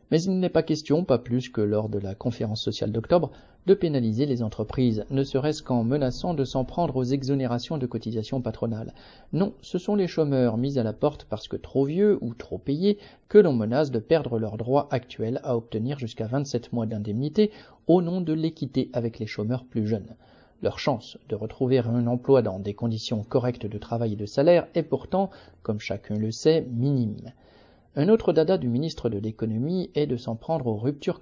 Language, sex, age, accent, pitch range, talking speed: French, male, 40-59, French, 115-160 Hz, 200 wpm